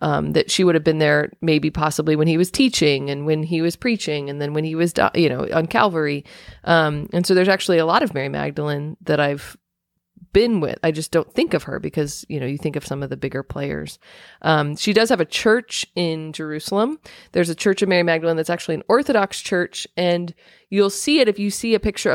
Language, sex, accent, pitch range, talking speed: English, female, American, 150-180 Hz, 235 wpm